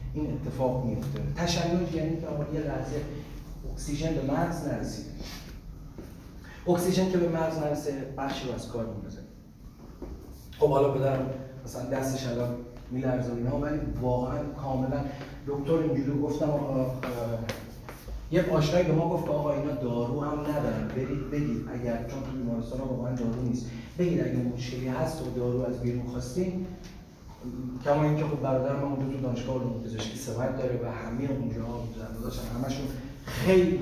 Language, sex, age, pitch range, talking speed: Persian, male, 30-49, 125-150 Hz, 145 wpm